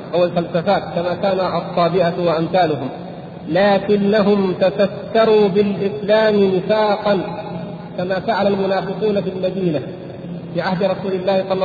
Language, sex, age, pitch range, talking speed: Arabic, male, 50-69, 175-220 Hz, 105 wpm